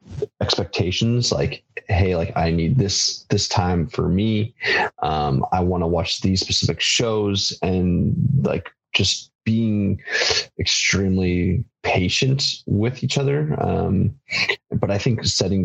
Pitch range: 90-110 Hz